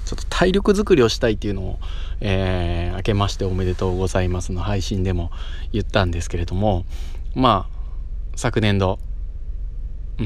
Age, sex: 20-39, male